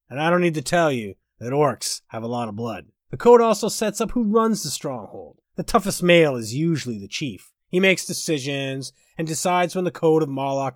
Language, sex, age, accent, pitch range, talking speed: English, male, 30-49, American, 135-190 Hz, 225 wpm